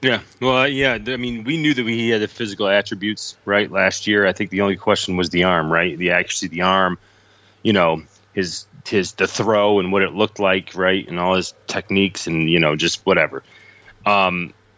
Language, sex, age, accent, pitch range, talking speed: English, male, 30-49, American, 95-110 Hz, 215 wpm